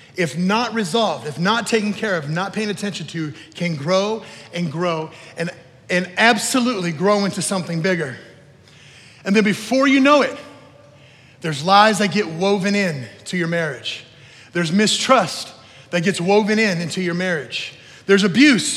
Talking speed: 155 wpm